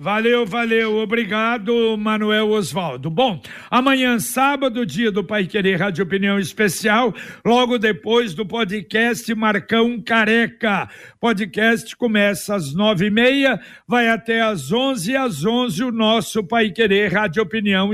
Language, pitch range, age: Portuguese, 210-240 Hz, 60-79